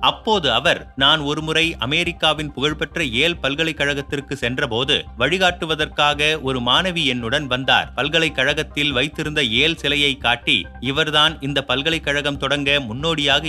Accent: native